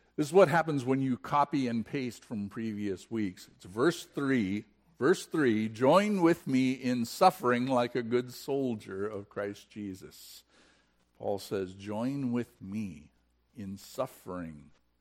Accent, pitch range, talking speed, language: American, 95-145 Hz, 145 wpm, English